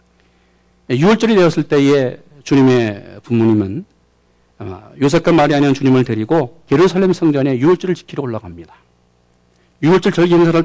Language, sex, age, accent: Korean, male, 50-69, native